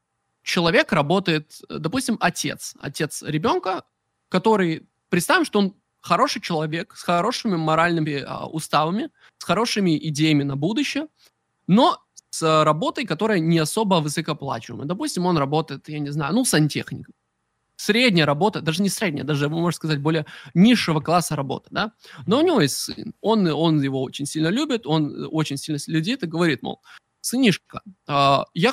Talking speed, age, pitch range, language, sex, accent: 150 wpm, 20-39, 150-195 Hz, Russian, male, native